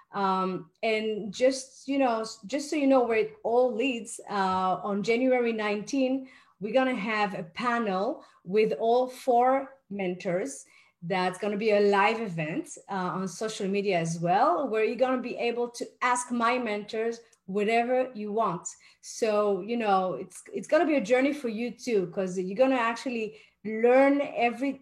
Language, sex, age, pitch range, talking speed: English, female, 30-49, 195-240 Hz, 165 wpm